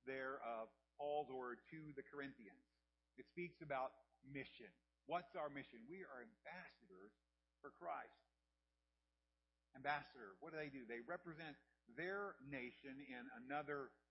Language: English